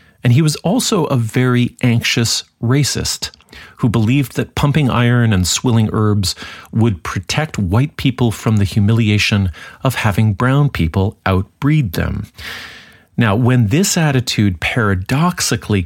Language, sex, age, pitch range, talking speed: English, male, 40-59, 95-125 Hz, 130 wpm